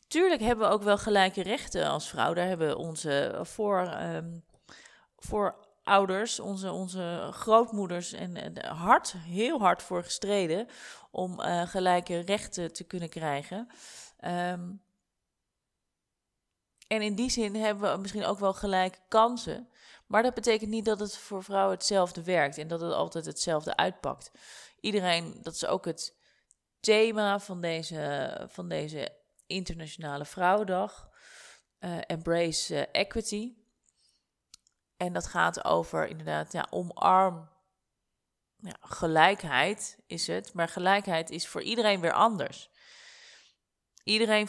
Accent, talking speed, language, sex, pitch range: Dutch, 125 wpm, Dutch, female, 170-215 Hz